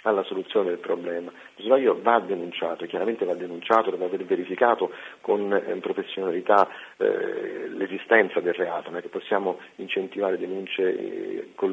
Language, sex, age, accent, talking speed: Italian, male, 50-69, native, 140 wpm